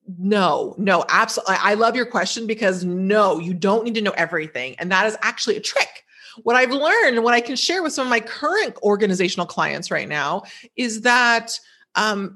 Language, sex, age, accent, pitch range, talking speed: English, female, 30-49, American, 195-275 Hz, 200 wpm